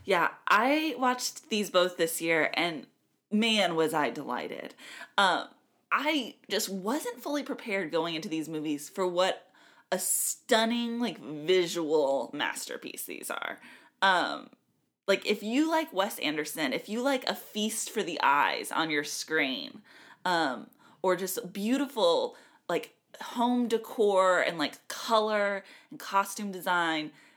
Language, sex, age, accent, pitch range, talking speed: English, female, 20-39, American, 180-245 Hz, 135 wpm